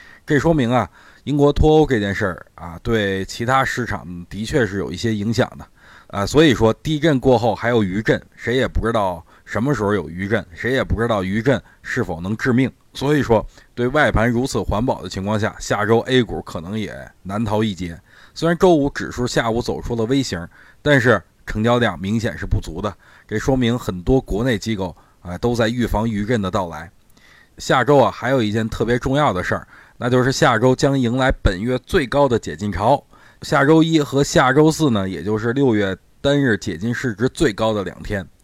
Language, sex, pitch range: Chinese, male, 100-135 Hz